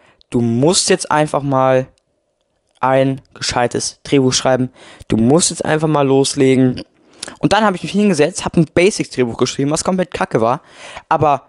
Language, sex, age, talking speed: German, male, 20-39, 155 wpm